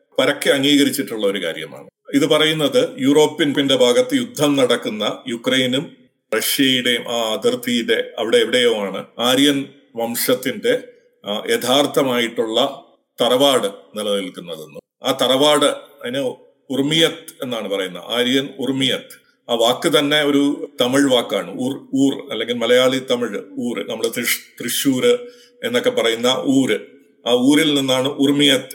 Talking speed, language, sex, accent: 105 wpm, Malayalam, male, native